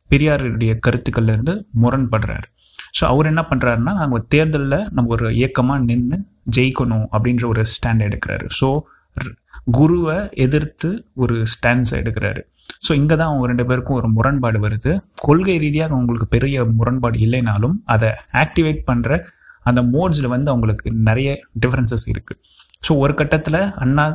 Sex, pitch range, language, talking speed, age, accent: male, 115-140 Hz, Tamil, 130 wpm, 20-39, native